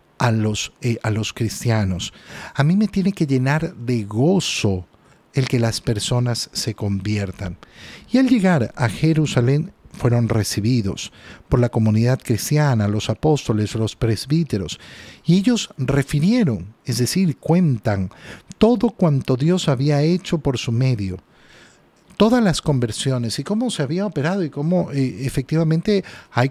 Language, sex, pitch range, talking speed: Spanish, male, 115-165 Hz, 135 wpm